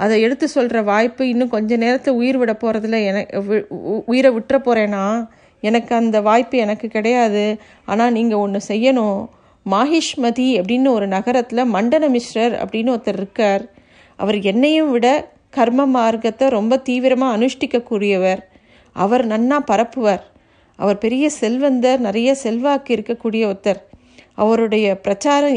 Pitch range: 215-255 Hz